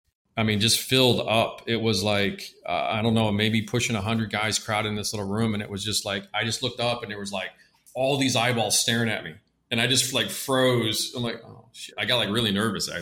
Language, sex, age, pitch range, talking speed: English, male, 40-59, 105-120 Hz, 260 wpm